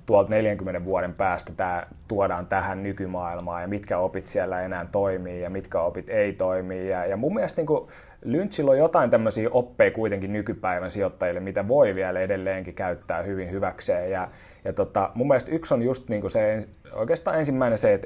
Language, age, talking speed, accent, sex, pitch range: Finnish, 30-49, 175 wpm, native, male, 95-125 Hz